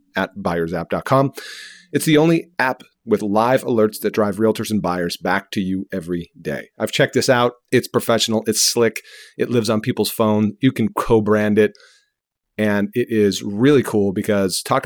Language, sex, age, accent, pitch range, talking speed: English, male, 40-59, American, 100-120 Hz, 175 wpm